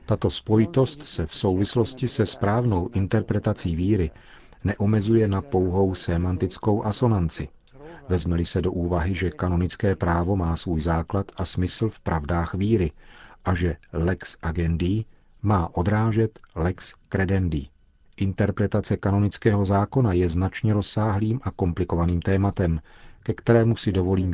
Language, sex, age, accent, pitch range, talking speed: Czech, male, 40-59, native, 90-110 Hz, 125 wpm